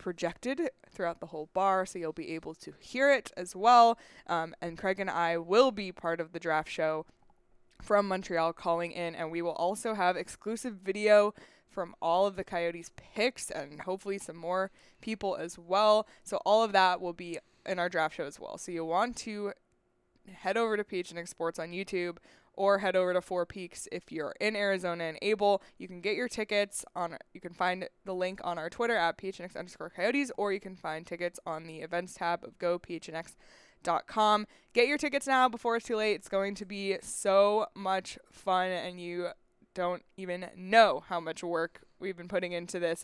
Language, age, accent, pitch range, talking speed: English, 20-39, American, 170-205 Hz, 200 wpm